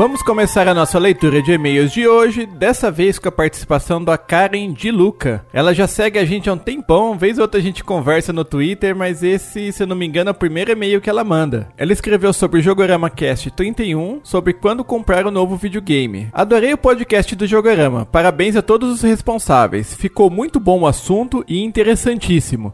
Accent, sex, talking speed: Brazilian, male, 210 wpm